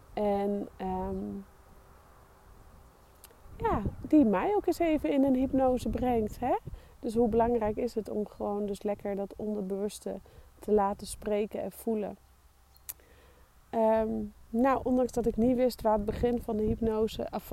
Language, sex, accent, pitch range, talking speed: Dutch, female, Dutch, 200-240 Hz, 145 wpm